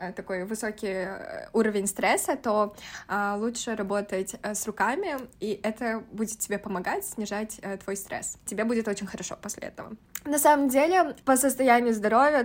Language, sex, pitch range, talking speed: Russian, female, 195-230 Hz, 140 wpm